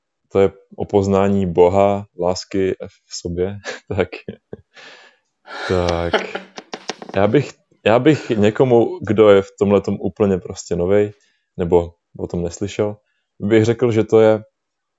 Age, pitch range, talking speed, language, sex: 20-39, 90-105 Hz, 120 wpm, Czech, male